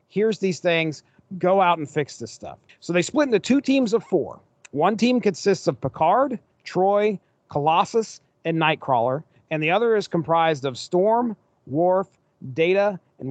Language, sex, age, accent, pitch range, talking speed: English, male, 40-59, American, 150-195 Hz, 160 wpm